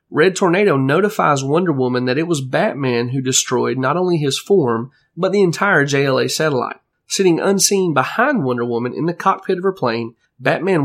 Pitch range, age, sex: 130-175 Hz, 30-49, male